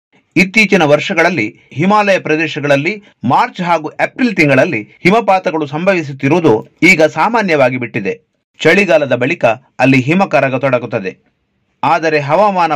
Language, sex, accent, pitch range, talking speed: Kannada, male, native, 140-185 Hz, 95 wpm